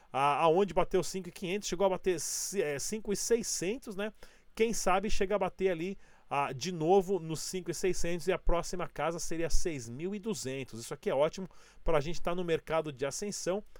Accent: Brazilian